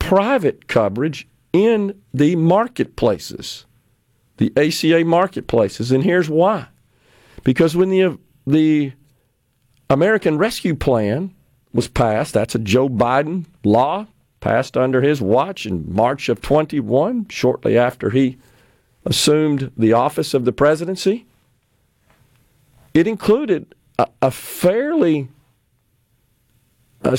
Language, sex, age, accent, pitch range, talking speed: English, male, 50-69, American, 125-170 Hz, 105 wpm